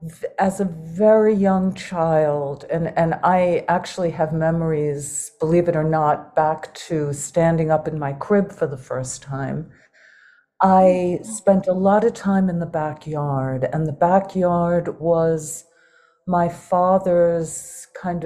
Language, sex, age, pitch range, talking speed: English, female, 50-69, 160-195 Hz, 140 wpm